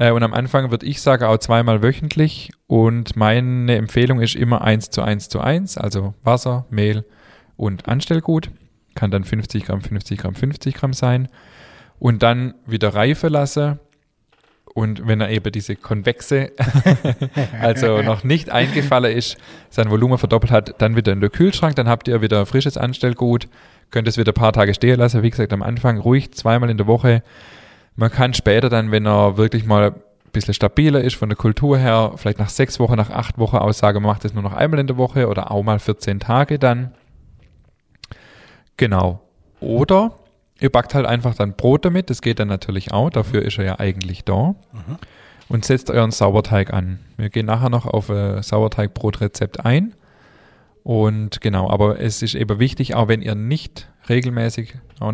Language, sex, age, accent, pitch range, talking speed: German, male, 10-29, German, 105-125 Hz, 180 wpm